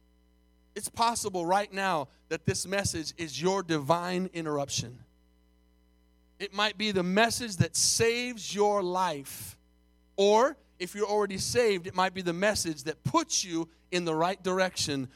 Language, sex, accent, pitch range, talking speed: English, male, American, 140-230 Hz, 145 wpm